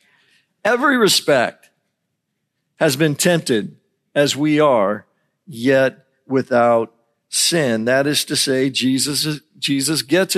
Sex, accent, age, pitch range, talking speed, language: male, American, 50-69, 145-200 Hz, 105 wpm, English